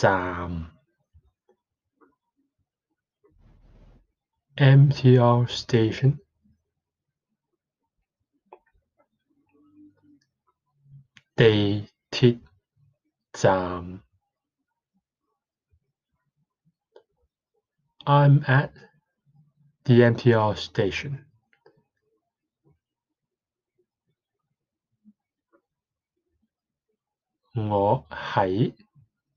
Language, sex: English, male